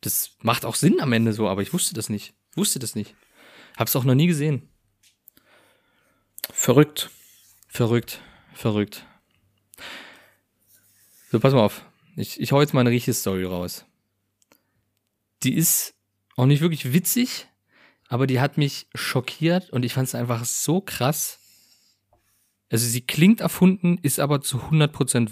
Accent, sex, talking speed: German, male, 145 wpm